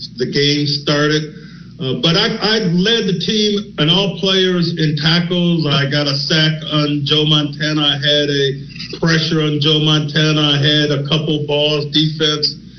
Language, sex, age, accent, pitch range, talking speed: English, male, 50-69, American, 150-180 Hz, 165 wpm